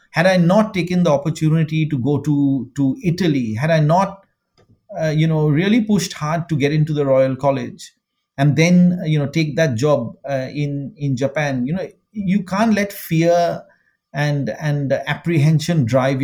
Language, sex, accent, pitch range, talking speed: English, male, Indian, 130-160 Hz, 175 wpm